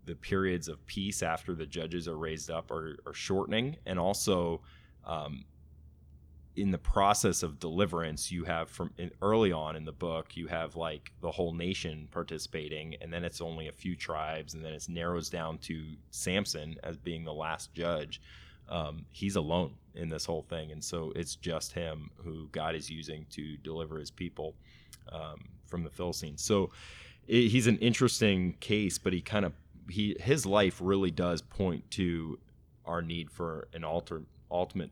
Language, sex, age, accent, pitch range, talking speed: English, male, 20-39, American, 80-90 Hz, 175 wpm